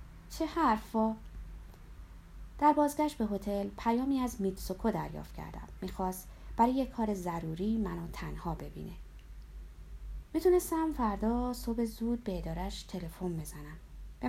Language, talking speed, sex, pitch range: Persian, 110 wpm, female, 170-240 Hz